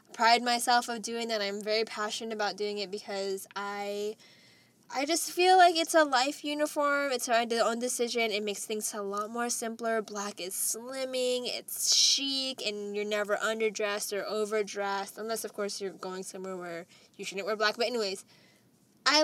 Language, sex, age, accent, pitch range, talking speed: English, female, 10-29, American, 200-255 Hz, 180 wpm